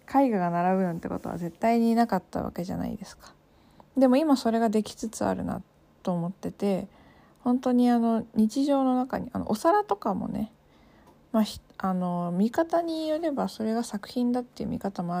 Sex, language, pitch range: female, Japanese, 190-230 Hz